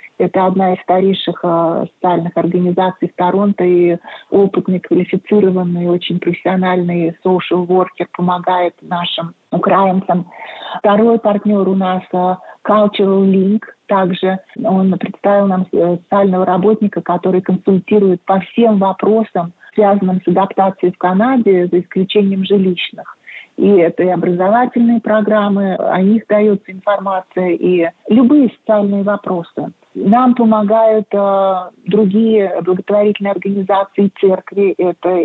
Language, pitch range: Russian, 180-210 Hz